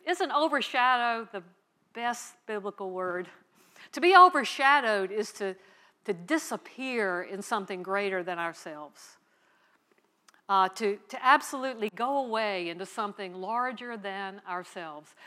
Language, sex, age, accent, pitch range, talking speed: English, female, 60-79, American, 195-250 Hz, 115 wpm